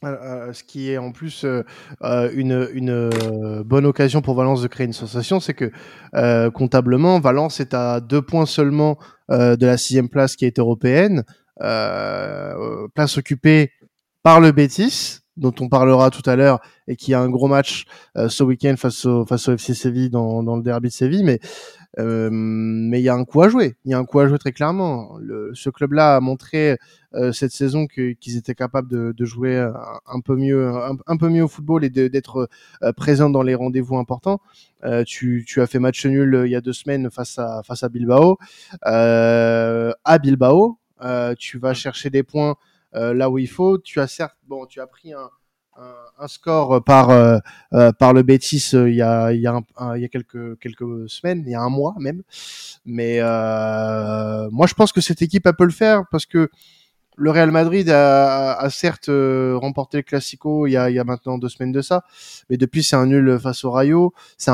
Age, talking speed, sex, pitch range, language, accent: 20-39, 210 wpm, male, 125-145 Hz, French, French